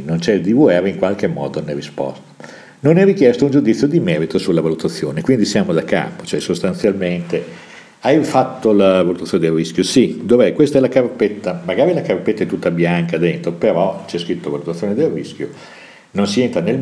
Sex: male